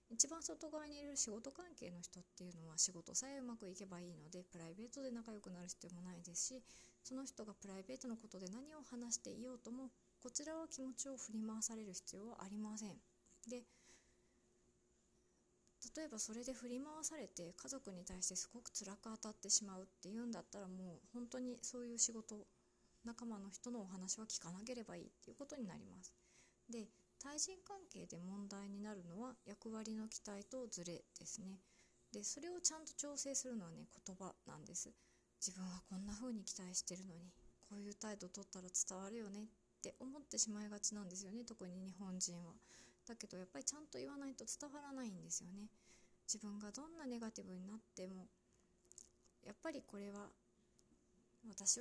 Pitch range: 190-250 Hz